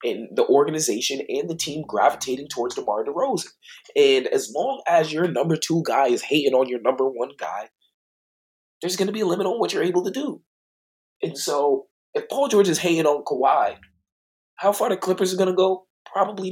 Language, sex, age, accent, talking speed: English, male, 20-39, American, 205 wpm